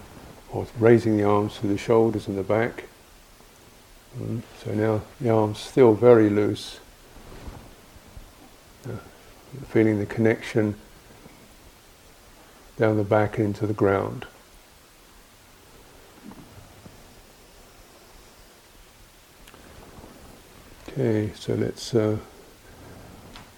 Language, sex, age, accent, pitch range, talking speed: English, male, 50-69, British, 105-120 Hz, 75 wpm